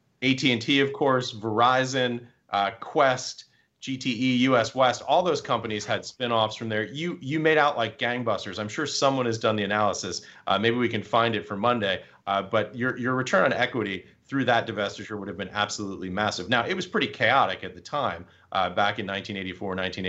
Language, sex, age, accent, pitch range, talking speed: English, male, 30-49, American, 100-125 Hz, 195 wpm